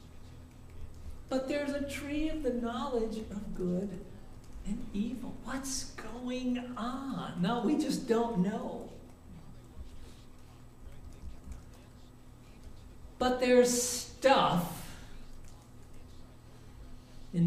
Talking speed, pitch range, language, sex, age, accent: 80 wpm, 130-200 Hz, English, male, 60-79, American